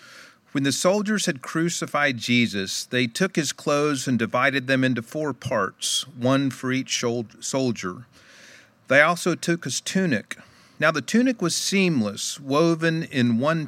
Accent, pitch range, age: American, 120-145 Hz, 40-59